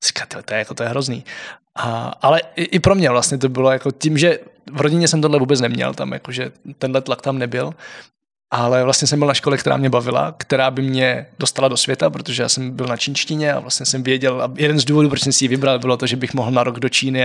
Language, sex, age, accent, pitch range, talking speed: Czech, male, 20-39, native, 125-145 Hz, 260 wpm